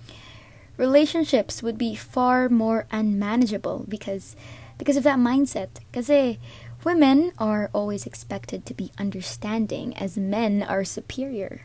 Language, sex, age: English, female, 20-39